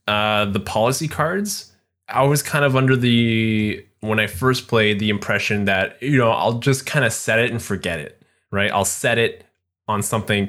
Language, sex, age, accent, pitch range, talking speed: English, male, 20-39, American, 105-140 Hz, 195 wpm